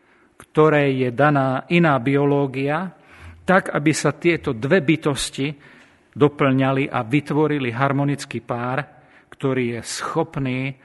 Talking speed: 105 wpm